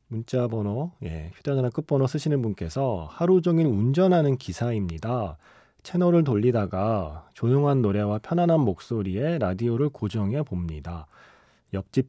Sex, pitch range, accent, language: male, 95-145 Hz, native, Korean